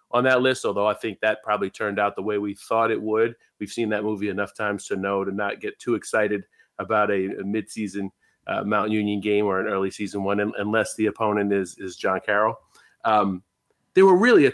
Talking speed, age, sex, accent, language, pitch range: 225 wpm, 30-49, male, American, English, 105-130 Hz